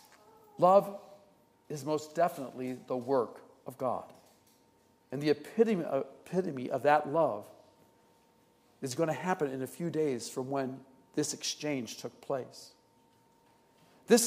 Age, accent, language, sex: 50-69, American, English, male